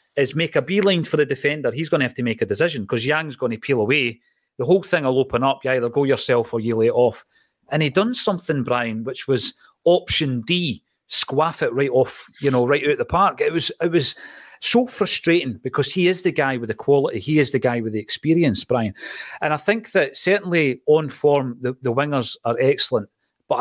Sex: male